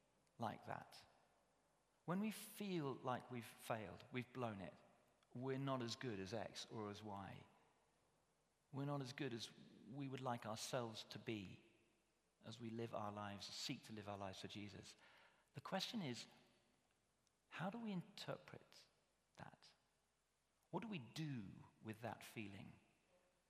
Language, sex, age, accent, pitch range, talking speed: English, male, 40-59, British, 110-140 Hz, 150 wpm